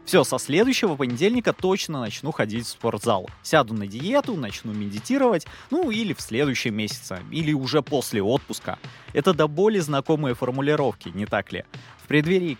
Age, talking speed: 20-39, 155 wpm